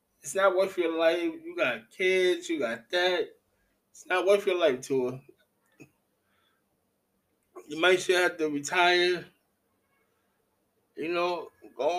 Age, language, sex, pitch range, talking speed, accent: 20-39, English, male, 165-205 Hz, 130 wpm, American